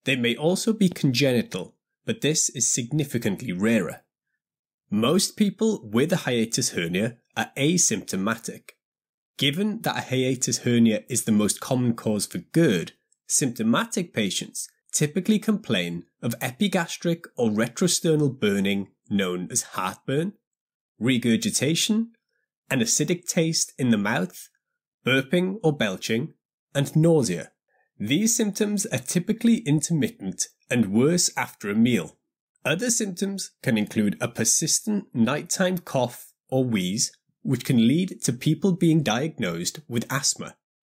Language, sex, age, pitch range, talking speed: English, male, 20-39, 120-190 Hz, 120 wpm